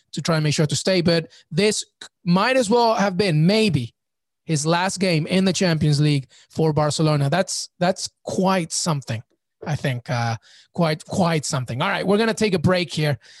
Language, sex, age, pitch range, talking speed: English, male, 30-49, 150-200 Hz, 195 wpm